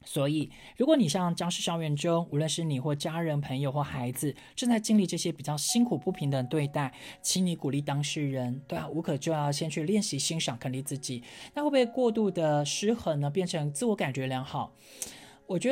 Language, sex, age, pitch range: Chinese, male, 20-39, 140-185 Hz